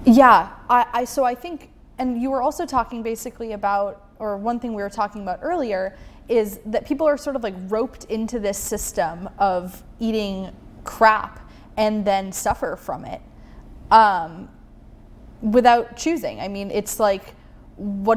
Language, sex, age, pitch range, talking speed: English, female, 20-39, 200-245 Hz, 160 wpm